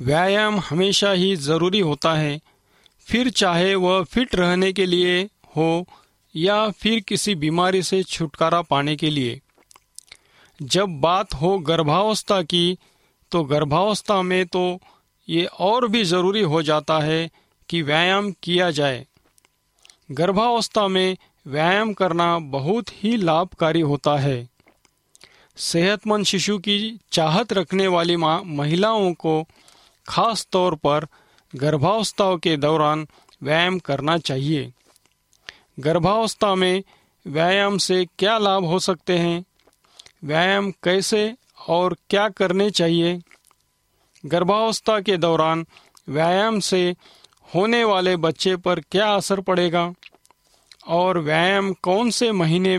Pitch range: 160-195 Hz